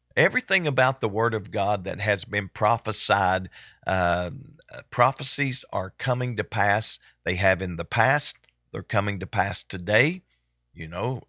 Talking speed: 150 wpm